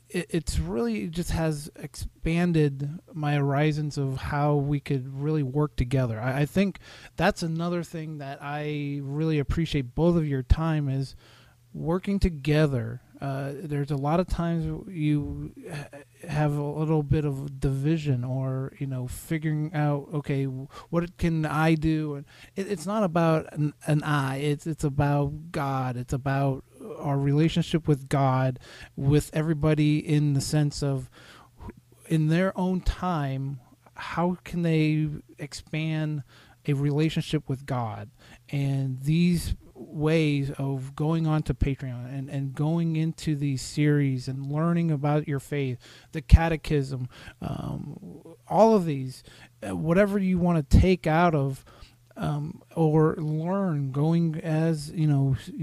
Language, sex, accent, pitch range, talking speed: English, male, American, 140-160 Hz, 135 wpm